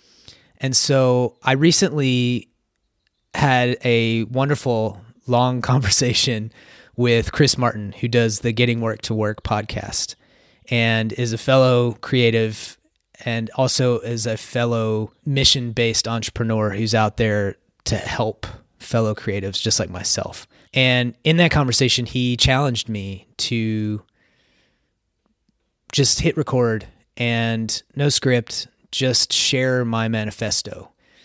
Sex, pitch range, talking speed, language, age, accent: male, 110-125 Hz, 115 wpm, English, 30-49, American